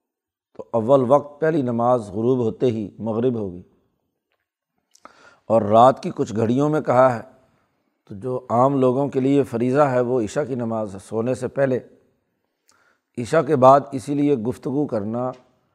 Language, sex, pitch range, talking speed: Urdu, male, 120-140 Hz, 155 wpm